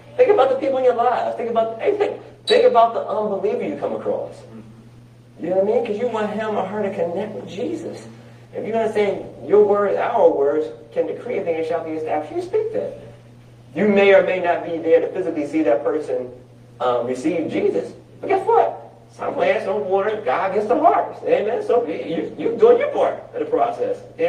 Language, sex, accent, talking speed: English, male, American, 225 wpm